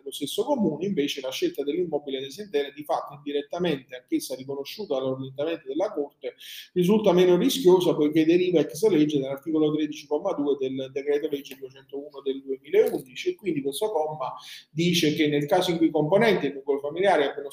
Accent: native